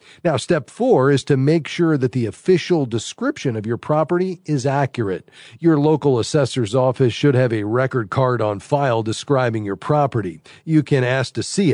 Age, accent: 40-59, American